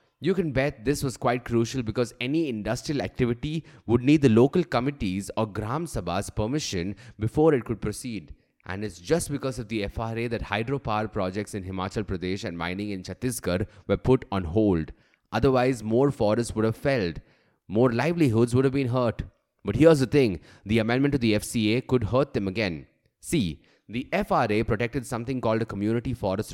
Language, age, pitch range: English, 20-39, 105-135 Hz